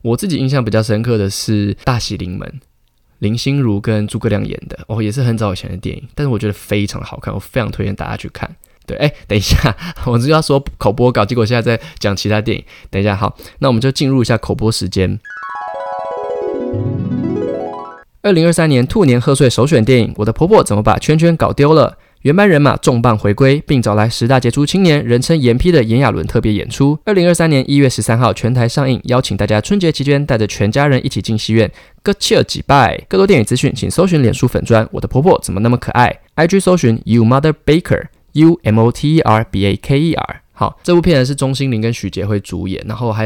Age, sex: 20-39, male